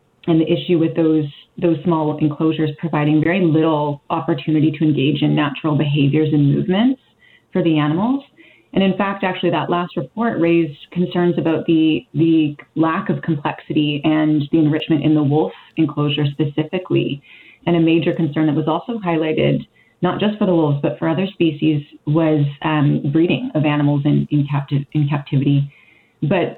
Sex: female